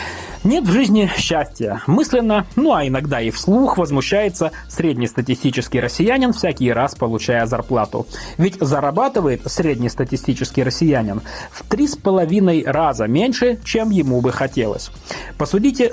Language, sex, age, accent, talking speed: Russian, male, 30-49, native, 120 wpm